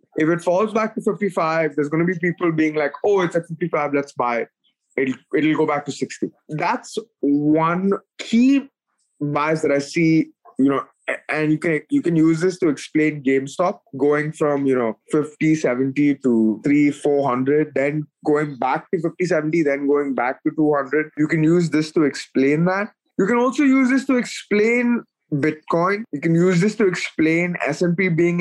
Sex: male